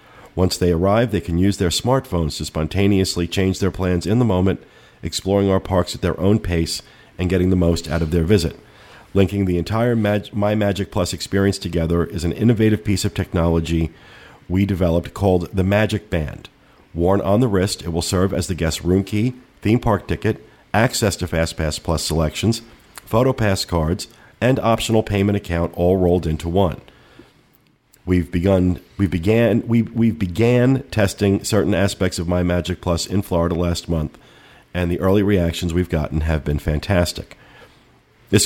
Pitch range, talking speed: 85-105 Hz, 175 wpm